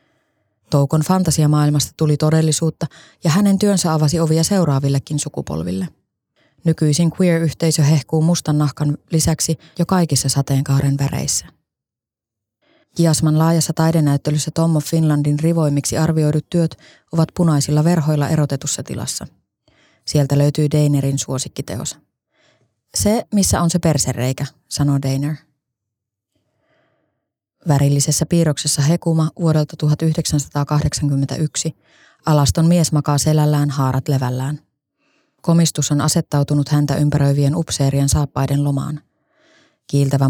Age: 20-39